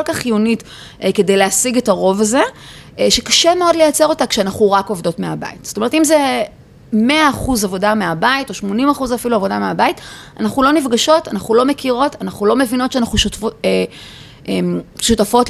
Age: 30-49